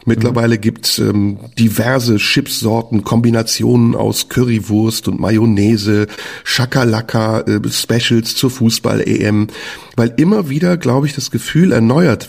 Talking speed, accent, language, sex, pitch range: 115 wpm, German, German, male, 105-140 Hz